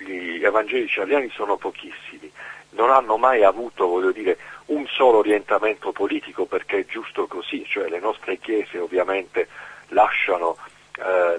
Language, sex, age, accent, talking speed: Italian, male, 40-59, native, 130 wpm